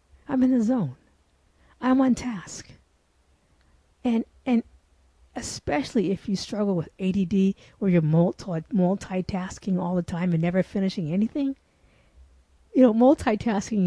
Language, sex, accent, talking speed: English, female, American, 120 wpm